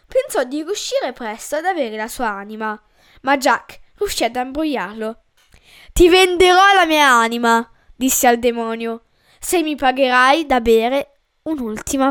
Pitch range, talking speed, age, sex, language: 235-320 Hz, 140 wpm, 10-29, female, Italian